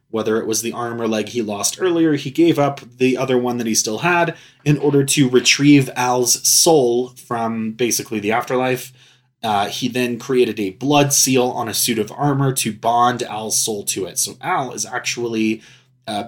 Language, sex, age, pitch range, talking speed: English, male, 20-39, 115-140 Hz, 195 wpm